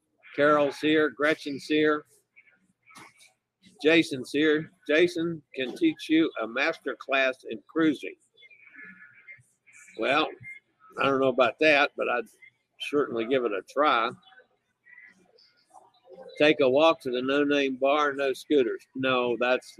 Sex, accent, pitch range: male, American, 120-160 Hz